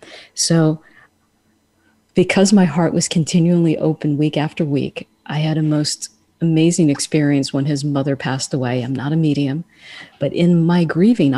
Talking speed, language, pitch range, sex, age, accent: 155 wpm, English, 145-175 Hz, female, 40-59, American